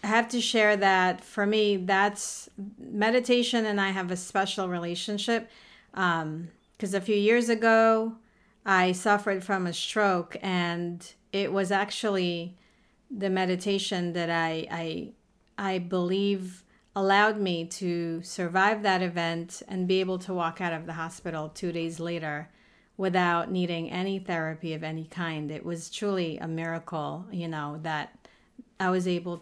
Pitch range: 175-210 Hz